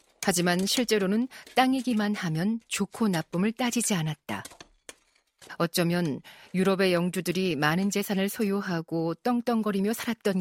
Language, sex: Korean, female